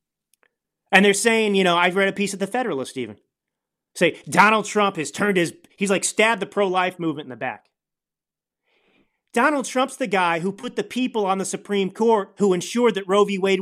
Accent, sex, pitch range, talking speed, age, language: American, male, 145-230 Hz, 205 wpm, 30-49, English